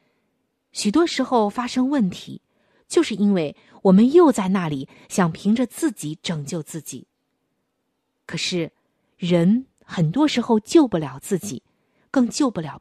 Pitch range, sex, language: 170-240 Hz, female, Chinese